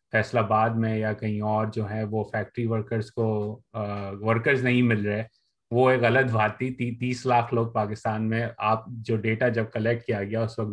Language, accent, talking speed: English, Indian, 185 wpm